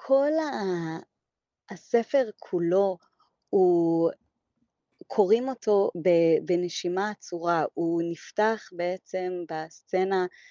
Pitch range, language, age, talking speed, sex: 180-205 Hz, Hebrew, 20-39, 75 wpm, female